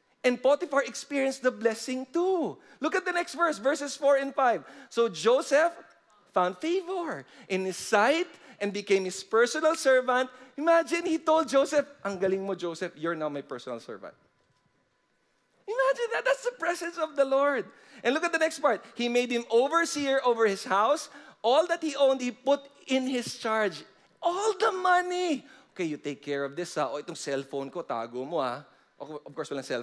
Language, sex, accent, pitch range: English, male, Filipino, 195-290 Hz